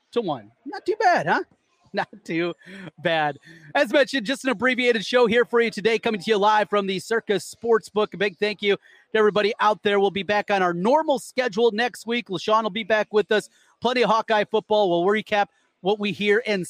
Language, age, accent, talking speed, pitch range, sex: English, 30-49, American, 215 wpm, 175-235 Hz, male